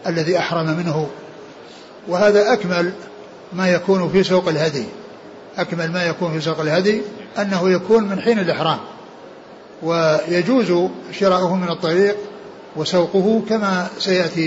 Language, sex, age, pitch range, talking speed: Arabic, male, 60-79, 170-190 Hz, 115 wpm